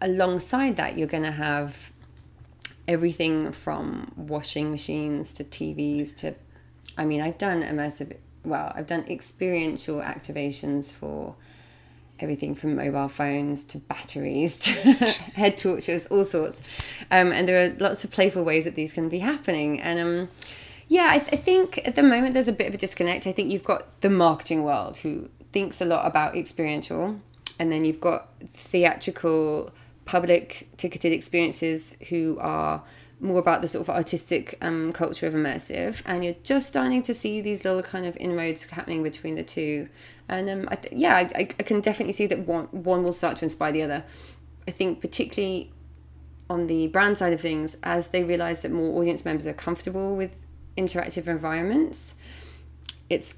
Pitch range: 150-185 Hz